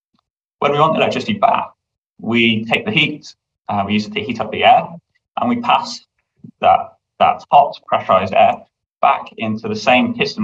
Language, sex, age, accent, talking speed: English, male, 20-39, British, 185 wpm